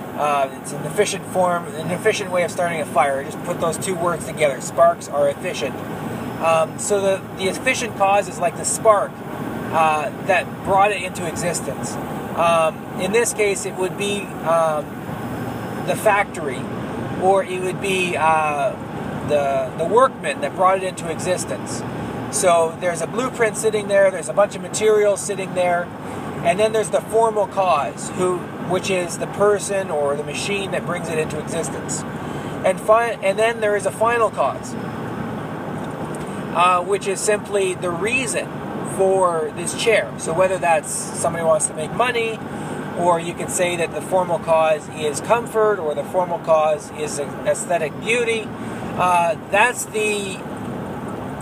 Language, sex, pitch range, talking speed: English, male, 165-205 Hz, 165 wpm